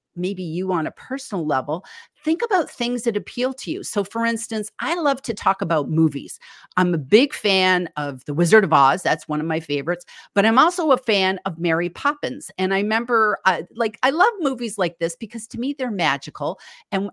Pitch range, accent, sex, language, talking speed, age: 165-230 Hz, American, female, English, 210 wpm, 50-69